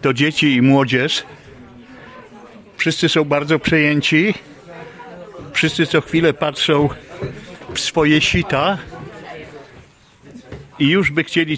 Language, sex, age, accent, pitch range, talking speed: Polish, male, 50-69, native, 115-145 Hz, 100 wpm